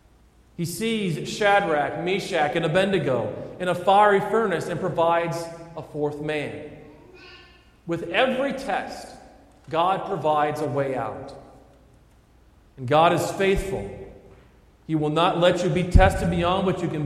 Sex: male